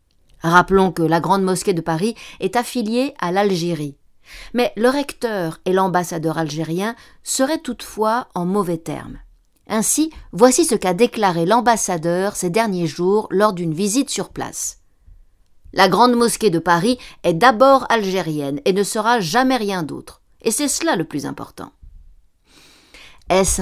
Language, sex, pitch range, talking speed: French, female, 175-240 Hz, 145 wpm